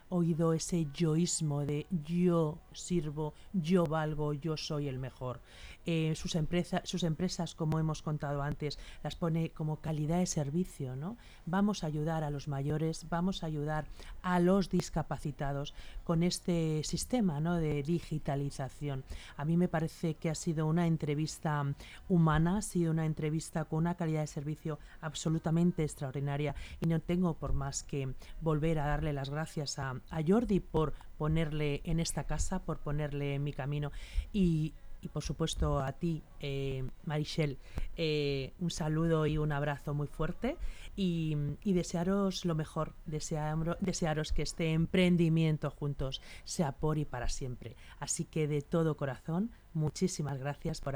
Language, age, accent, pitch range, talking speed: Spanish, 40-59, Spanish, 145-170 Hz, 150 wpm